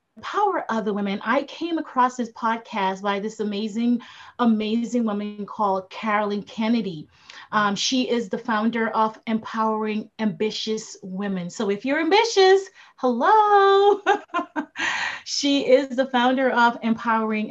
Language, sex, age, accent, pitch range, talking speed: English, female, 30-49, American, 205-255 Hz, 125 wpm